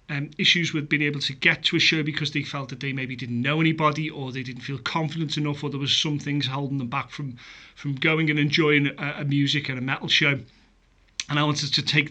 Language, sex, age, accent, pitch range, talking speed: English, male, 30-49, British, 145-165 Hz, 250 wpm